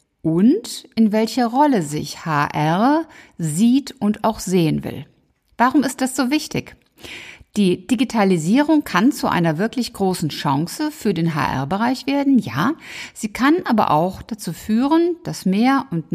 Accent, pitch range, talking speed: German, 180-250 Hz, 140 wpm